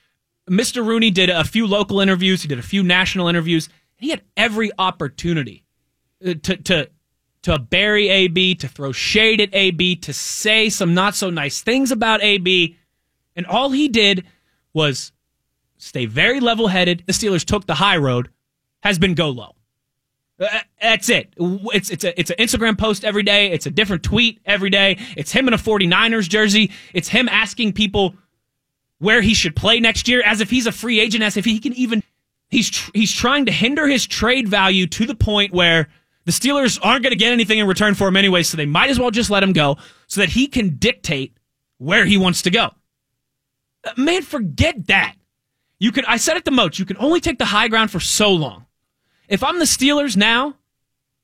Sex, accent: male, American